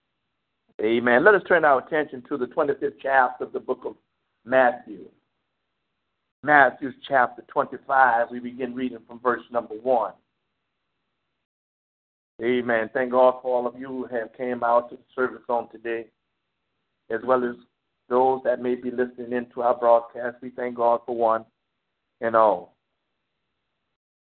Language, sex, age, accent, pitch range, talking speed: English, male, 60-79, American, 115-135 Hz, 150 wpm